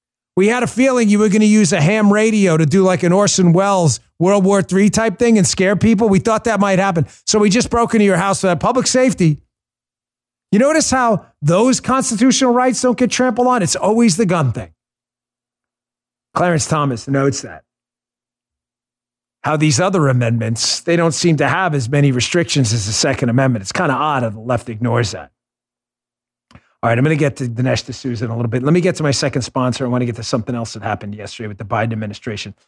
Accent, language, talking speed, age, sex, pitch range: American, English, 220 wpm, 40-59, male, 115-185 Hz